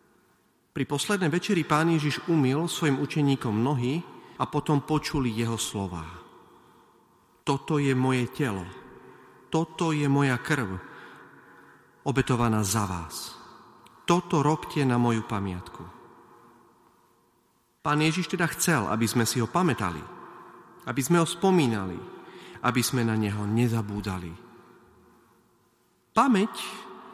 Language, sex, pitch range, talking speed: Slovak, male, 115-155 Hz, 110 wpm